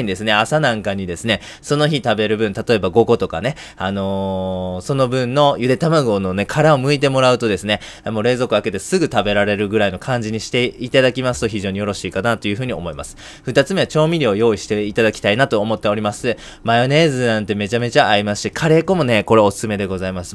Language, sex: Japanese, male